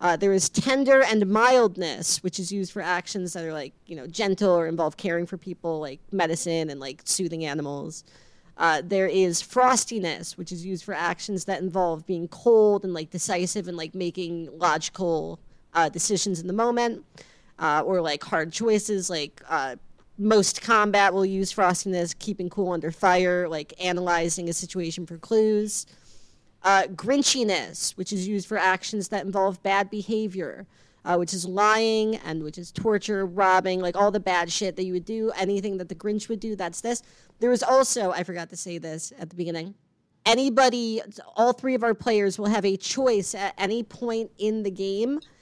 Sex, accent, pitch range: female, American, 175-215 Hz